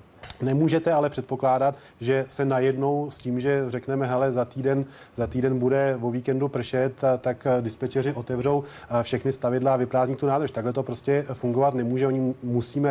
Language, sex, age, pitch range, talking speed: Czech, male, 30-49, 125-135 Hz, 165 wpm